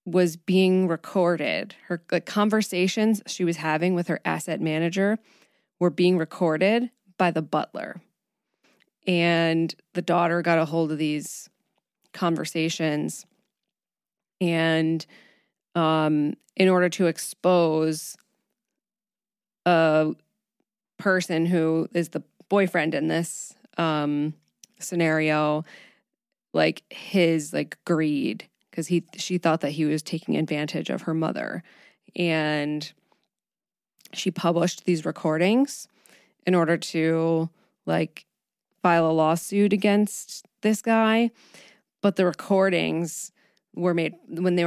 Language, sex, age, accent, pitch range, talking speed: English, female, 20-39, American, 160-195 Hz, 110 wpm